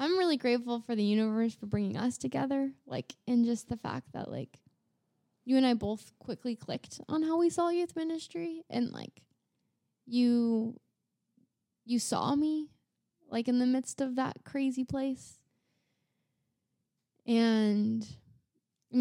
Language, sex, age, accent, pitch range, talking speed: English, female, 10-29, American, 210-250 Hz, 140 wpm